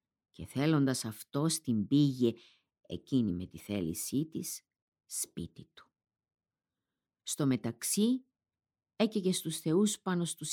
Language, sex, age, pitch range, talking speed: Greek, female, 50-69, 115-165 Hz, 110 wpm